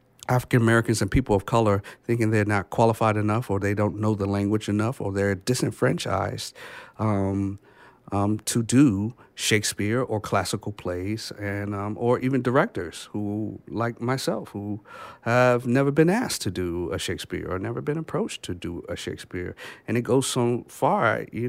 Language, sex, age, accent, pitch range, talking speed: English, male, 50-69, American, 105-130 Hz, 165 wpm